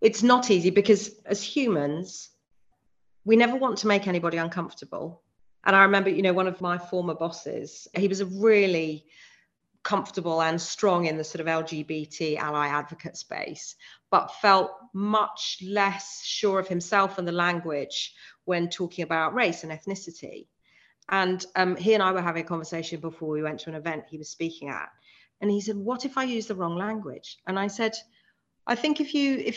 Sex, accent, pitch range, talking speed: female, British, 160-215 Hz, 185 wpm